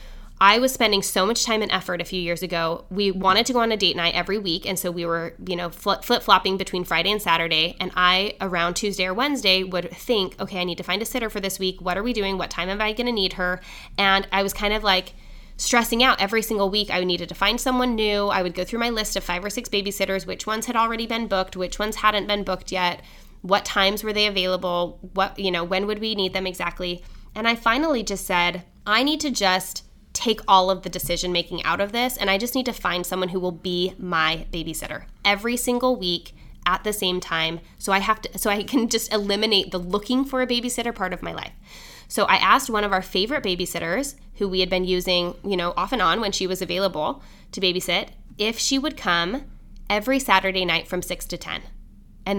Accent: American